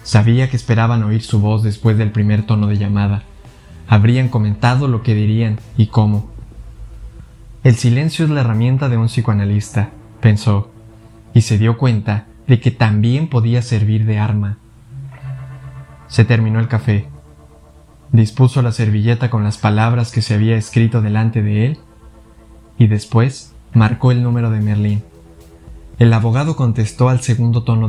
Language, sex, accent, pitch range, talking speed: Spanish, male, Mexican, 105-125 Hz, 150 wpm